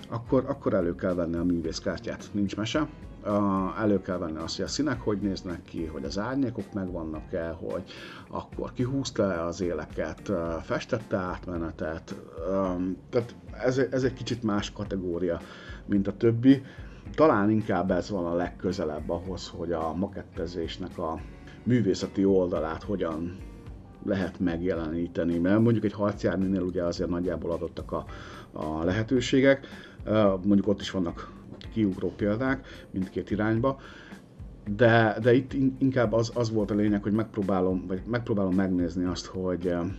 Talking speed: 140 wpm